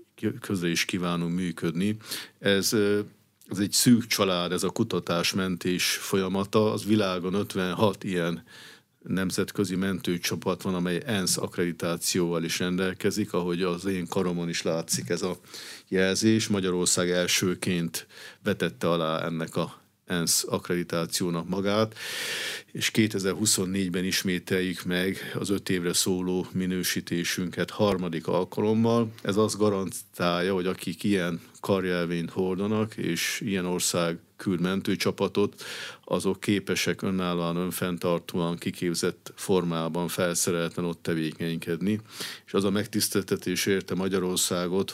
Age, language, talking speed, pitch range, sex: 50-69, Hungarian, 110 wpm, 85-100 Hz, male